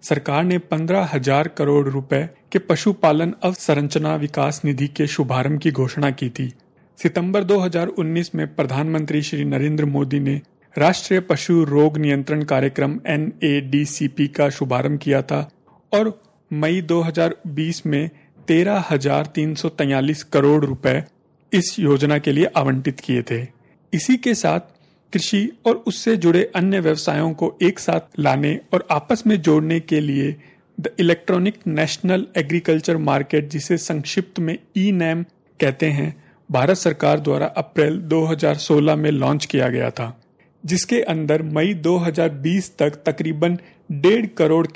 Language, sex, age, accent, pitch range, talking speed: Hindi, male, 40-59, native, 145-175 Hz, 135 wpm